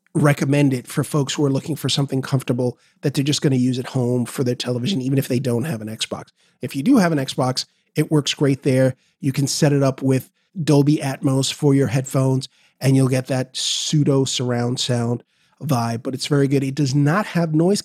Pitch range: 135-165 Hz